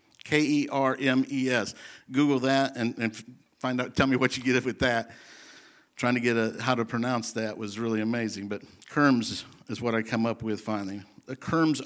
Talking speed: 205 wpm